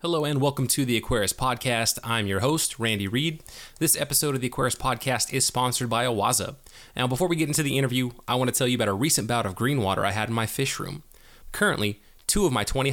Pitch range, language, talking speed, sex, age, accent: 110-135 Hz, English, 240 wpm, male, 20-39, American